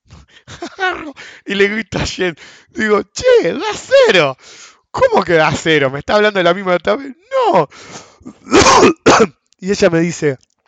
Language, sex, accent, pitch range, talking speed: English, male, Argentinian, 140-205 Hz, 140 wpm